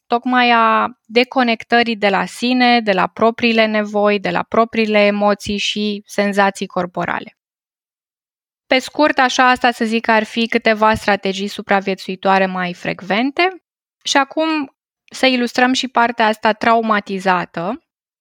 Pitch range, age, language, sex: 205-250 Hz, 20-39, Romanian, female